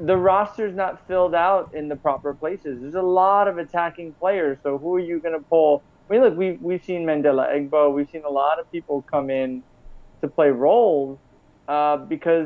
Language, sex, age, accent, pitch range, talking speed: English, male, 20-39, American, 135-170 Hz, 205 wpm